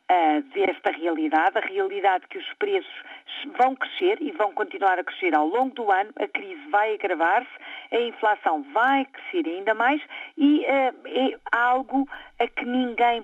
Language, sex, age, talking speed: Portuguese, female, 40-59, 155 wpm